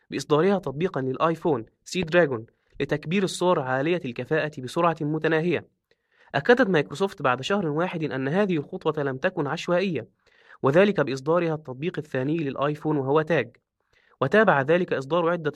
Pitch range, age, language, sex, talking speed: 135-165 Hz, 20-39, Arabic, male, 125 wpm